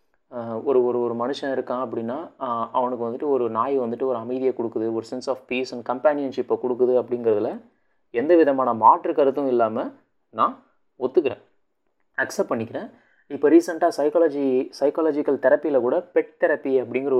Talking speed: 140 wpm